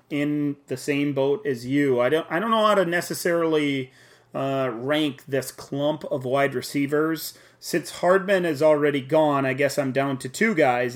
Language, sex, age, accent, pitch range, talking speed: English, male, 30-49, American, 140-165 Hz, 180 wpm